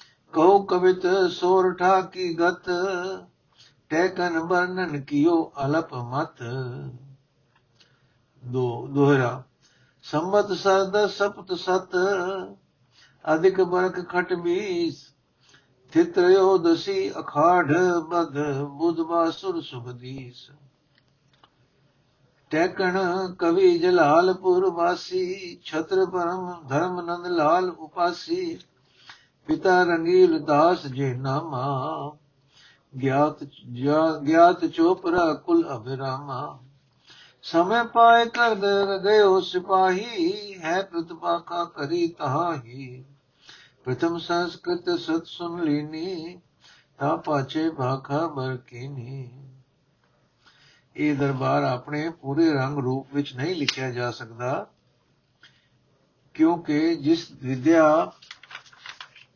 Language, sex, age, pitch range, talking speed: Punjabi, male, 60-79, 140-185 Hz, 80 wpm